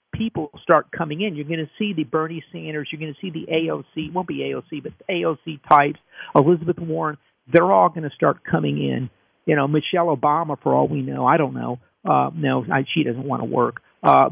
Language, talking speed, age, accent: English, 220 wpm, 50-69, American